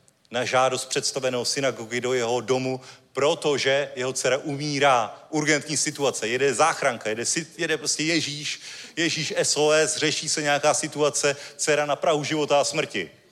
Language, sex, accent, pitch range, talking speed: Czech, male, native, 130-165 Hz, 145 wpm